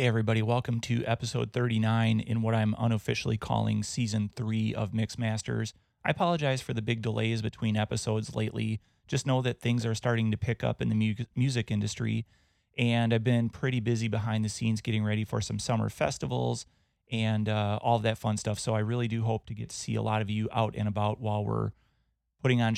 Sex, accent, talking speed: male, American, 205 wpm